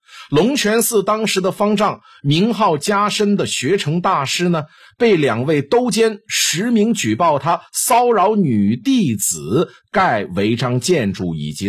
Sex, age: male, 50-69